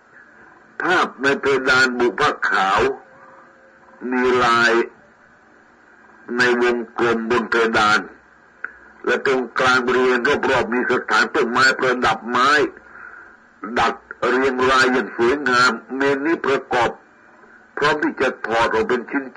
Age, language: 60-79, Thai